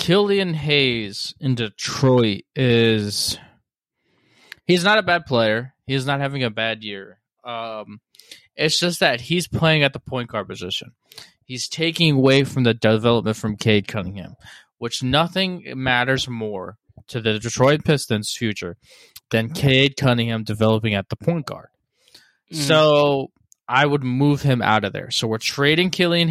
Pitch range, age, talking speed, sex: 115-145 Hz, 20-39, 150 wpm, male